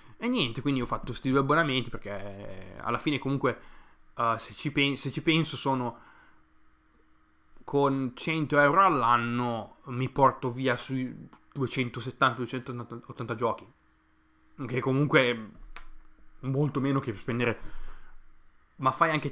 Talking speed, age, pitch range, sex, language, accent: 125 wpm, 20-39, 115-150 Hz, male, Italian, native